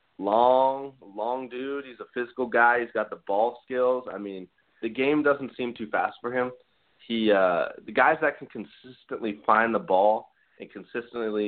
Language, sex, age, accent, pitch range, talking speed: English, male, 20-39, American, 95-120 Hz, 180 wpm